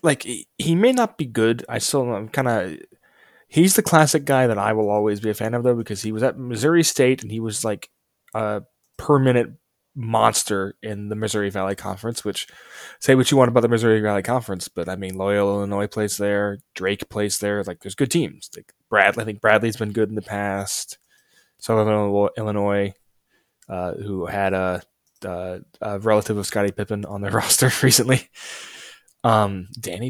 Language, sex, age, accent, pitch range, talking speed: English, male, 10-29, American, 100-130 Hz, 190 wpm